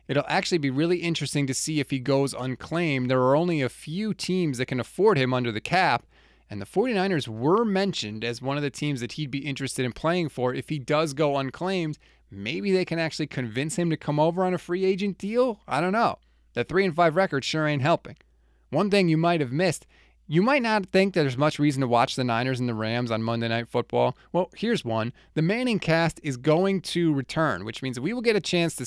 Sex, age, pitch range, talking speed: male, 20-39, 130-170 Hz, 235 wpm